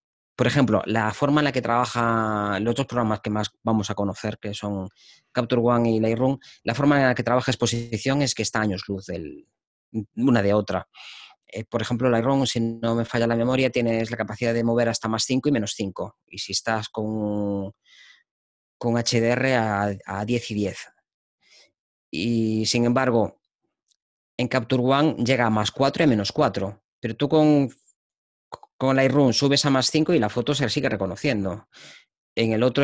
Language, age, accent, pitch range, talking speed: Spanish, 20-39, Spanish, 110-130 Hz, 185 wpm